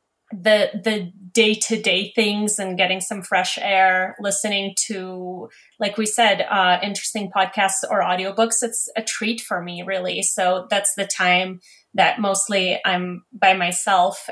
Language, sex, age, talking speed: English, female, 20-39, 145 wpm